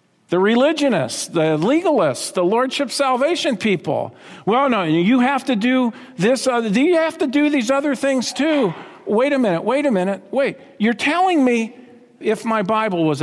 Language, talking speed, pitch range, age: English, 170 wpm, 200-285 Hz, 50-69